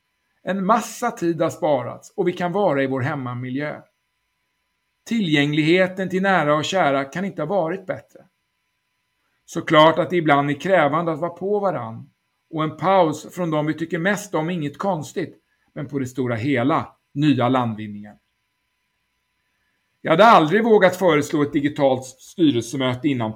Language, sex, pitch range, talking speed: Swedish, male, 125-175 Hz, 155 wpm